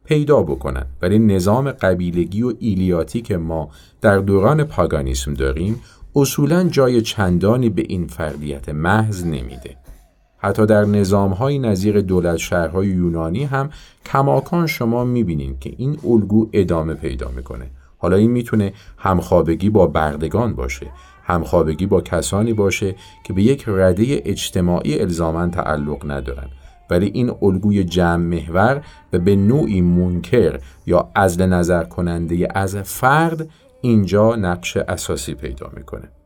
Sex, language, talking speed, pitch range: male, Arabic, 125 wpm, 80-110 Hz